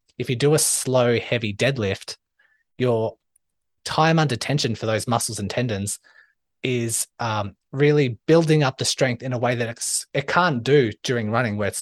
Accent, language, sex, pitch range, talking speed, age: Australian, English, male, 110-140 Hz, 180 wpm, 20-39